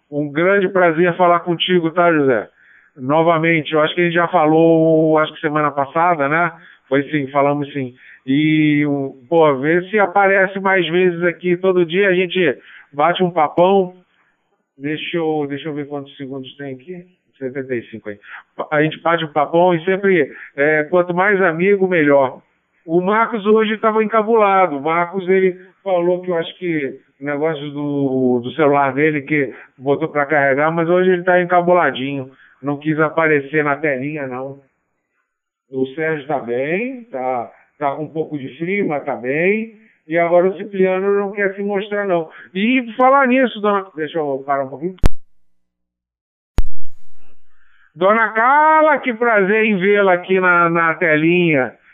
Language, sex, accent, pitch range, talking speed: Portuguese, male, Brazilian, 145-185 Hz, 155 wpm